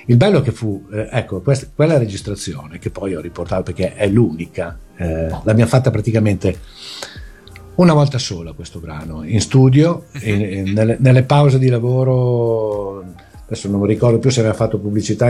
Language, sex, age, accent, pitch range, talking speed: Italian, male, 50-69, native, 95-130 Hz, 165 wpm